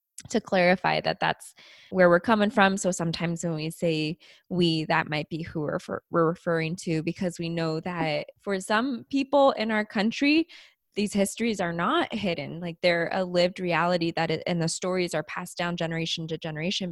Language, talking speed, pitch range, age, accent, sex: English, 190 wpm, 165-190 Hz, 20-39, American, female